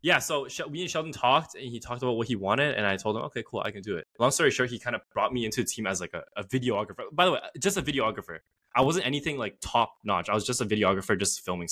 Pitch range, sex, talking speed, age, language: 105-135 Hz, male, 290 wpm, 10-29, English